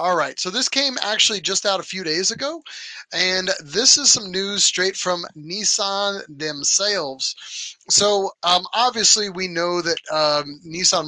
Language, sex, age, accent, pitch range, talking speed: English, male, 30-49, American, 150-195 Hz, 155 wpm